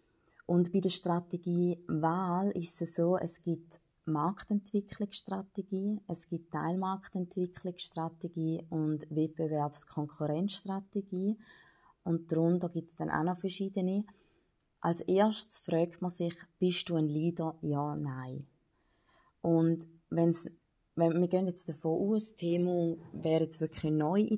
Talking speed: 120 wpm